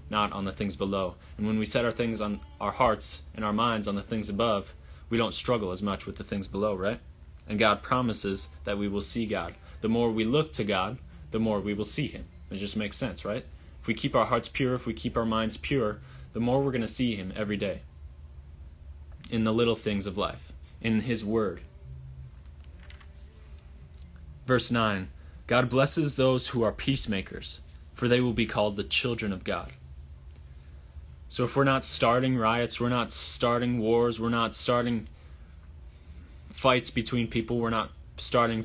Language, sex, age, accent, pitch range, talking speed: English, male, 20-39, American, 75-115 Hz, 190 wpm